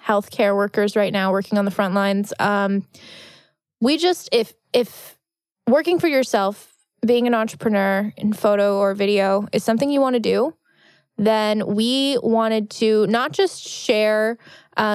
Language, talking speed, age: English, 155 wpm, 20-39